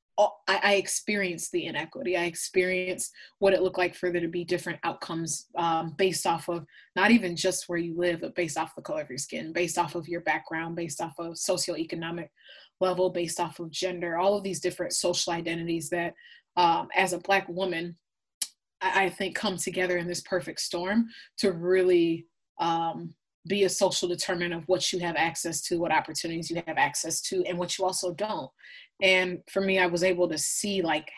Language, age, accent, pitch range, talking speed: English, 20-39, American, 170-185 Hz, 195 wpm